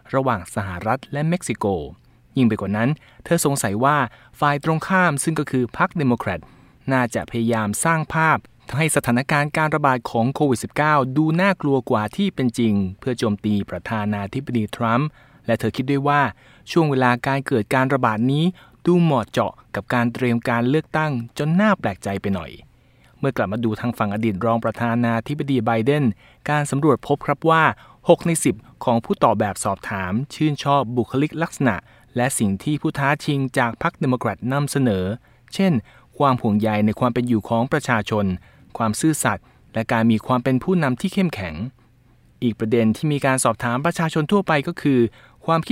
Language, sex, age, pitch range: Thai, male, 20-39, 115-150 Hz